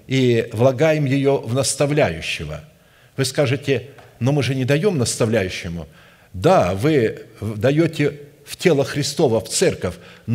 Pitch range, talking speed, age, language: 125-155 Hz, 120 wpm, 50-69, Russian